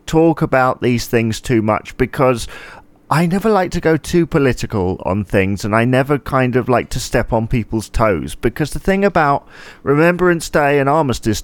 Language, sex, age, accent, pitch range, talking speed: English, male, 40-59, British, 110-145 Hz, 185 wpm